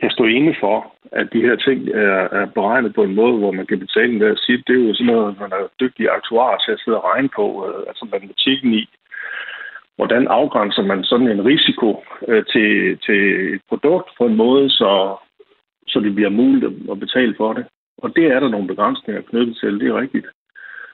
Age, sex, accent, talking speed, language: 60-79, male, native, 200 wpm, Danish